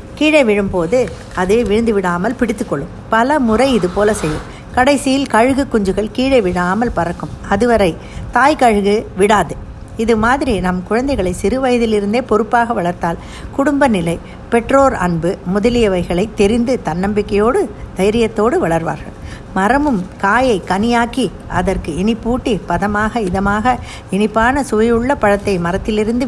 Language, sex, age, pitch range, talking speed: Tamil, female, 60-79, 185-240 Hz, 110 wpm